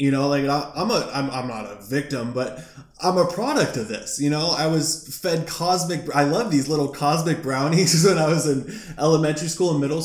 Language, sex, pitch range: English, male, 130-170 Hz